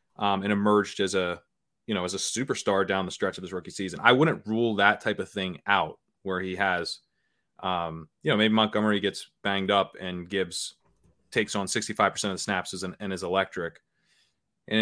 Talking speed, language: 205 wpm, English